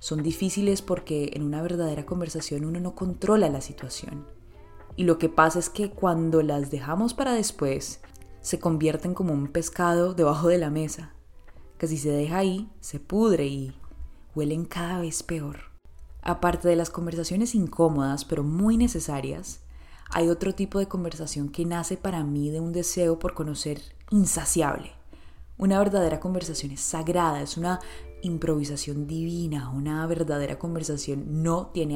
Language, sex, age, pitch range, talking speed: English, female, 20-39, 145-180 Hz, 150 wpm